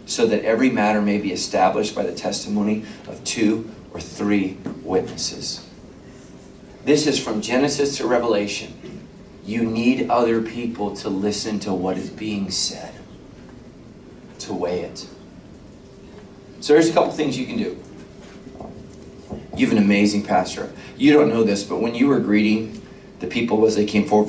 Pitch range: 100-135 Hz